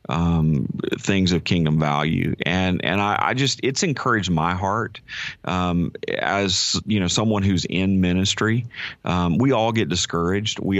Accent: American